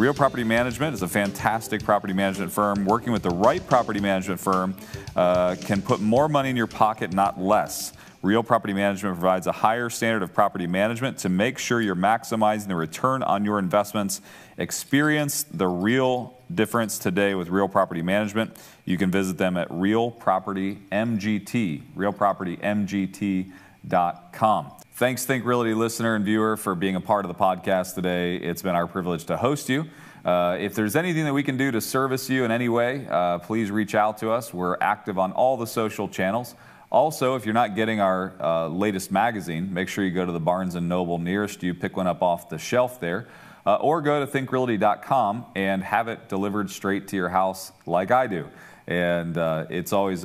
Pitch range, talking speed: 95-115 Hz, 190 wpm